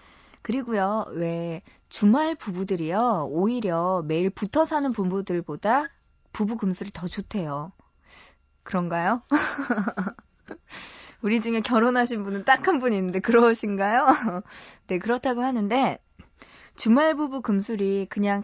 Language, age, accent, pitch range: Korean, 20-39, native, 180-245 Hz